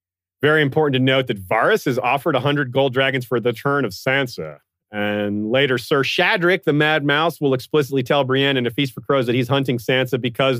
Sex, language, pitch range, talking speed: male, English, 110-150 Hz, 210 wpm